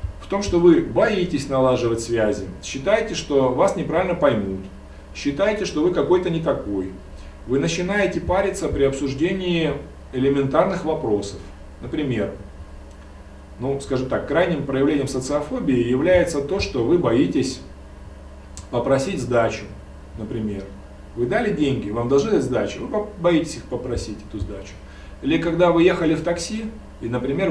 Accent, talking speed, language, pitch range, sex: native, 130 wpm, Russian, 95-160 Hz, male